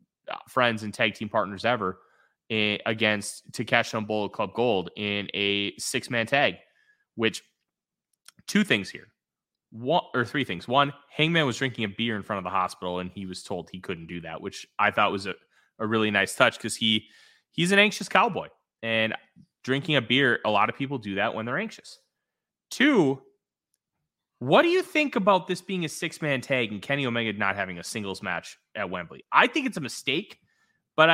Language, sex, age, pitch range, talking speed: English, male, 20-39, 110-160 Hz, 190 wpm